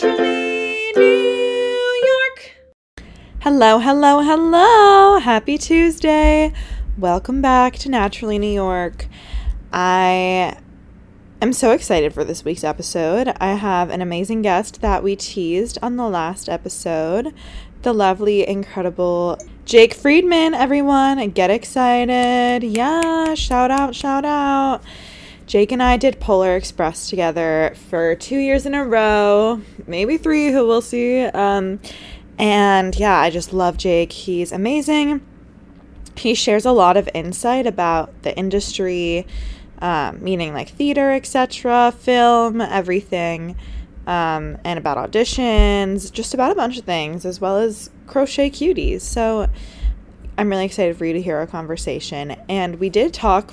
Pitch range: 175-260 Hz